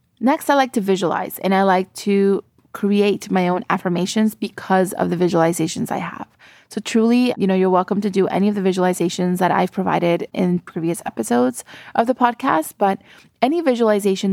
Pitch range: 180-215 Hz